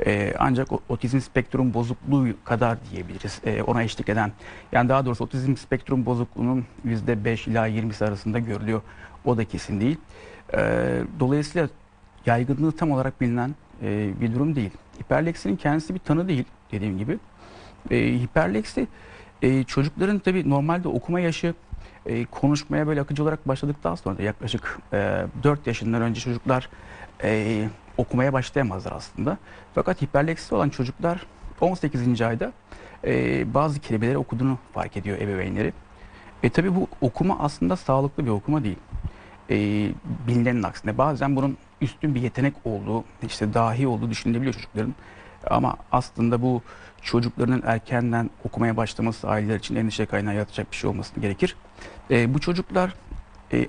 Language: Turkish